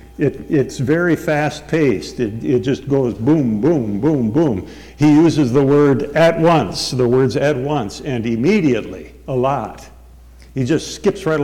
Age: 60-79